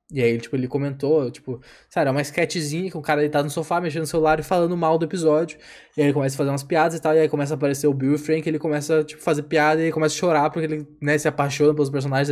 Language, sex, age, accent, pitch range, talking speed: Portuguese, male, 10-29, Brazilian, 130-160 Hz, 295 wpm